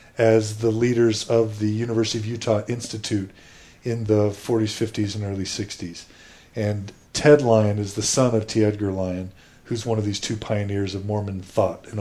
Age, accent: 40-59, American